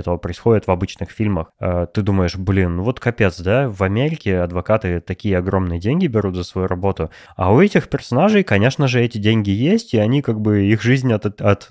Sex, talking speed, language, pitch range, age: male, 195 wpm, Russian, 90-110 Hz, 20-39